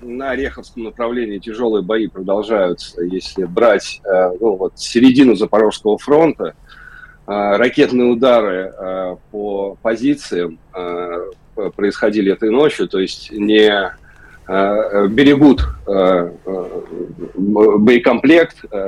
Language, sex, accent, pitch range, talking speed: Russian, male, native, 95-120 Hz, 75 wpm